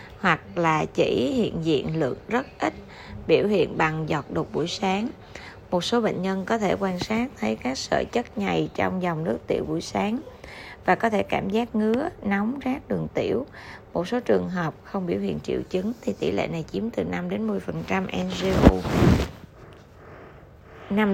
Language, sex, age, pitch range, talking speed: Vietnamese, female, 20-39, 130-205 Hz, 180 wpm